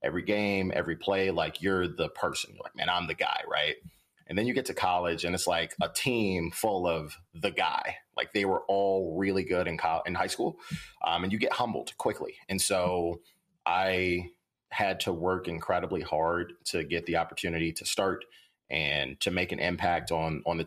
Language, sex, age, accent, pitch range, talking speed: English, male, 30-49, American, 85-95 Hz, 200 wpm